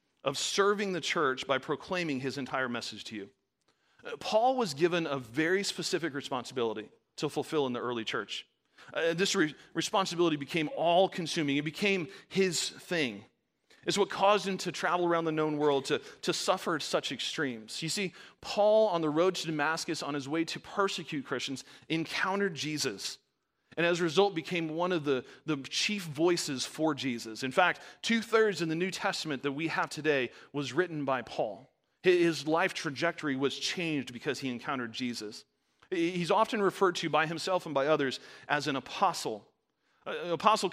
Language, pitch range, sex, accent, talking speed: English, 140-185 Hz, male, American, 170 wpm